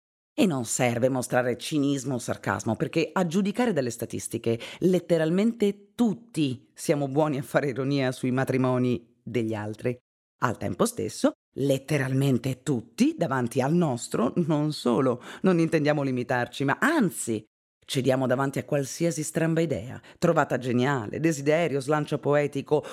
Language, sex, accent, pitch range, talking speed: Italian, female, native, 120-170 Hz, 130 wpm